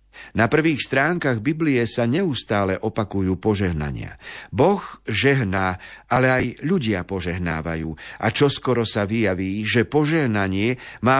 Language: Slovak